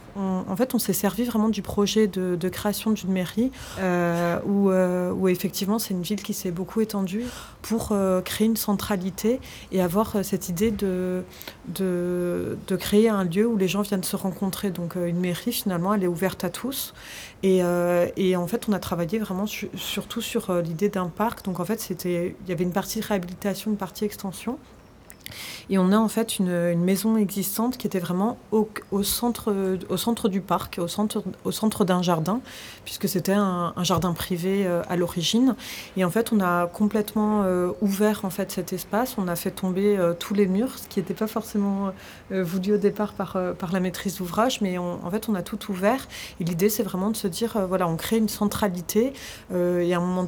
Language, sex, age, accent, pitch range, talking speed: French, female, 30-49, French, 180-215 Hz, 210 wpm